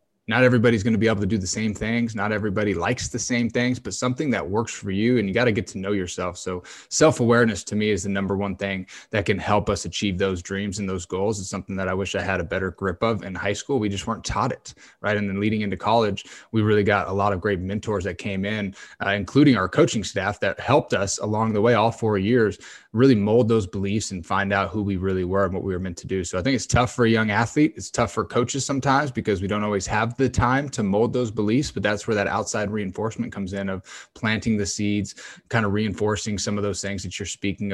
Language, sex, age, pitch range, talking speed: English, male, 20-39, 95-110 Hz, 260 wpm